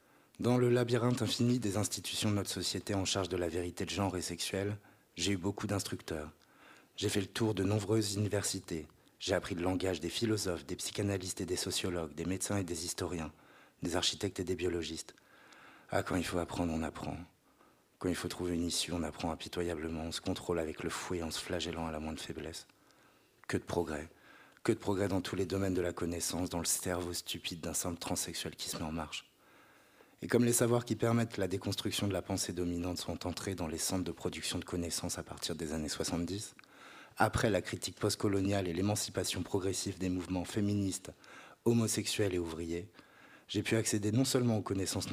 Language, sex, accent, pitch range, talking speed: French, male, French, 85-100 Hz, 200 wpm